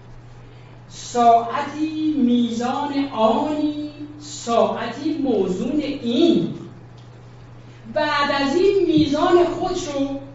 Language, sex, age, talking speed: Persian, female, 40-59, 65 wpm